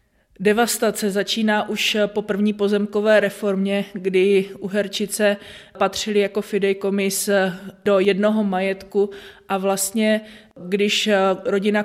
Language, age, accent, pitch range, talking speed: Czech, 20-39, native, 190-205 Hz, 100 wpm